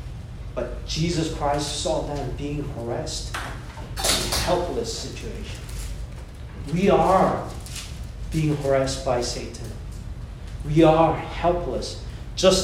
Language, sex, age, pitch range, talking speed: English, male, 40-59, 120-175 Hz, 90 wpm